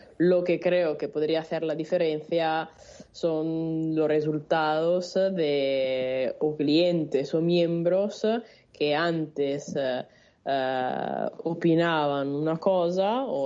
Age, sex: 20-39, female